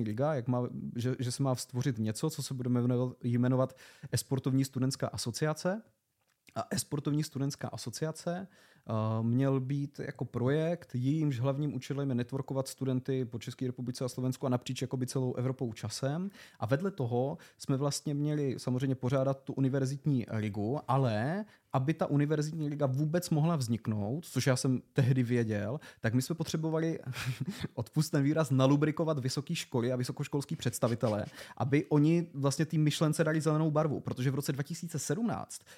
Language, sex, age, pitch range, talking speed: Czech, male, 30-49, 125-150 Hz, 150 wpm